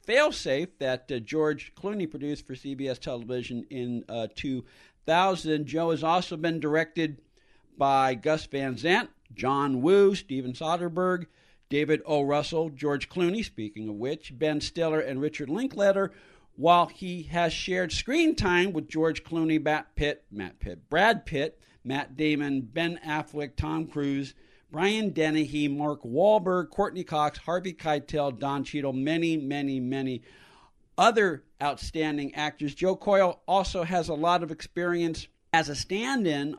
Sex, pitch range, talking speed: male, 135-170 Hz, 140 wpm